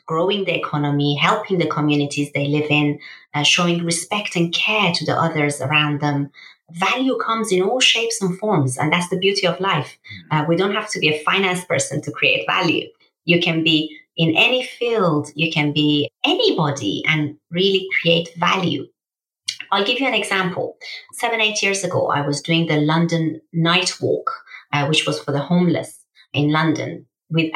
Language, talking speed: English, 180 wpm